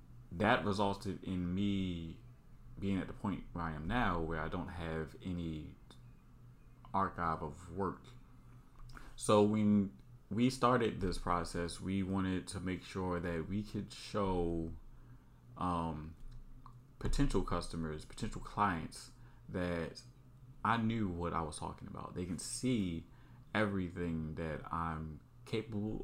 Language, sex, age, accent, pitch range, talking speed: English, male, 30-49, American, 85-115 Hz, 125 wpm